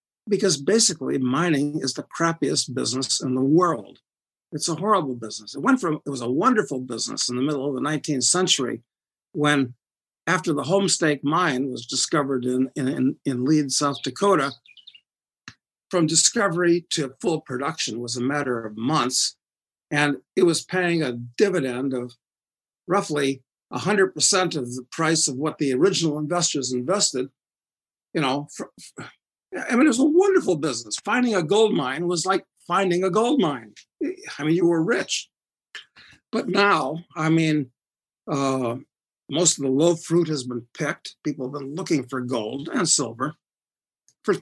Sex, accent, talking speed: male, American, 160 wpm